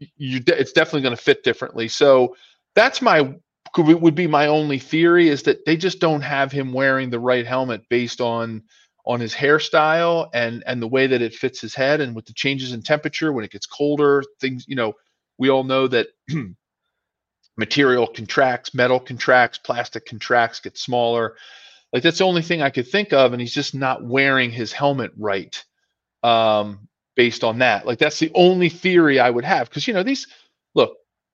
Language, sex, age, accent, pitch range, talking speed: English, male, 40-59, American, 120-150 Hz, 190 wpm